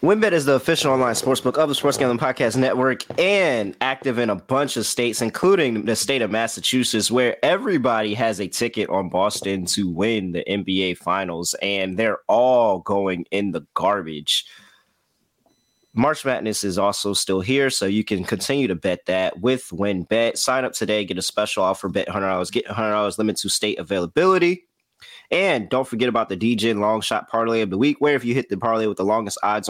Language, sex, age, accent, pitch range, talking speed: English, male, 20-39, American, 100-130 Hz, 195 wpm